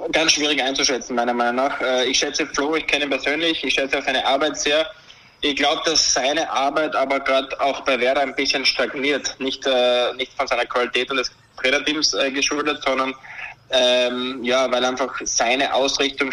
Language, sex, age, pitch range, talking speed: German, male, 20-39, 130-150 Hz, 175 wpm